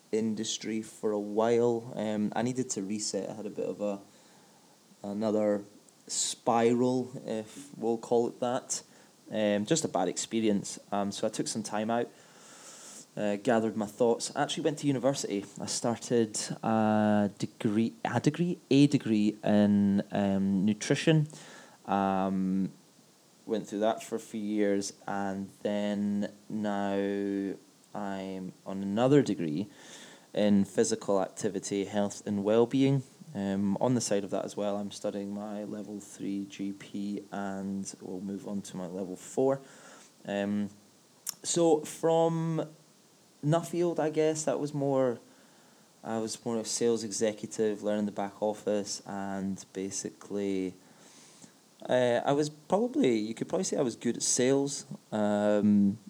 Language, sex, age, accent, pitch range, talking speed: English, male, 20-39, British, 100-125 Hz, 140 wpm